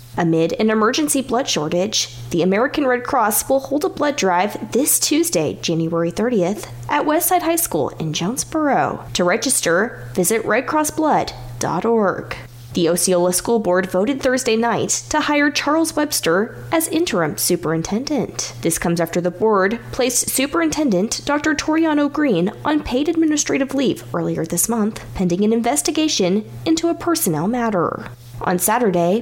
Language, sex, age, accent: English, female, 20-39, American